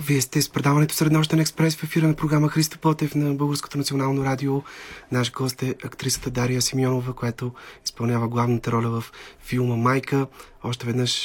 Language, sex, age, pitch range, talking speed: Bulgarian, male, 30-49, 120-140 Hz, 160 wpm